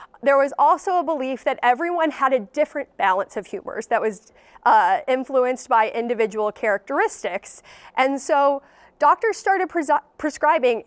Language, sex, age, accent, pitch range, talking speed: English, female, 30-49, American, 230-295 Hz, 140 wpm